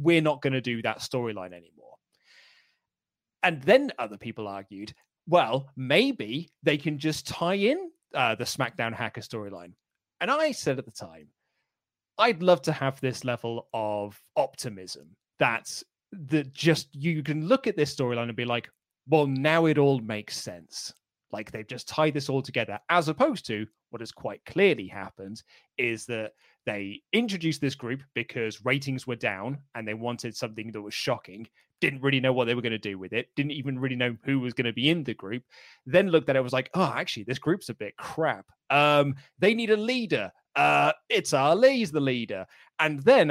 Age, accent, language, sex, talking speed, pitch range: 30-49, British, English, male, 190 wpm, 115-160 Hz